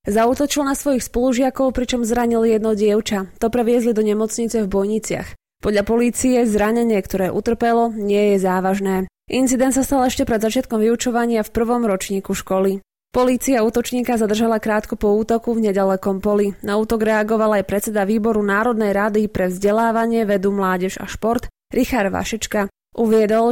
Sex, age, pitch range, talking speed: female, 20-39, 205-245 Hz, 150 wpm